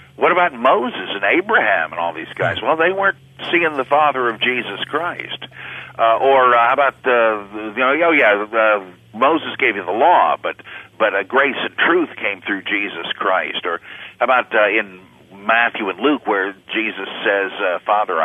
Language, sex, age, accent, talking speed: English, male, 60-79, American, 190 wpm